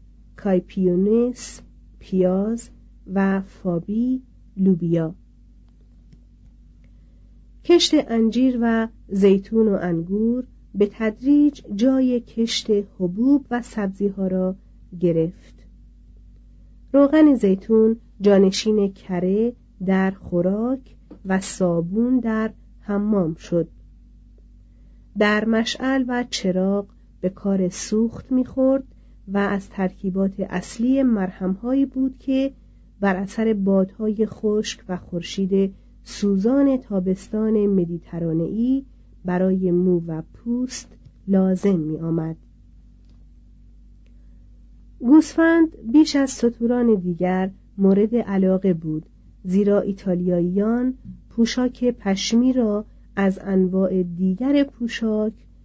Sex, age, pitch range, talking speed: female, 40-59, 180-230 Hz, 85 wpm